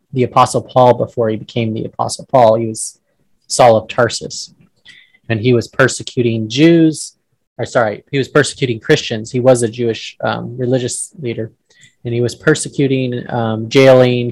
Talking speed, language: 160 wpm, English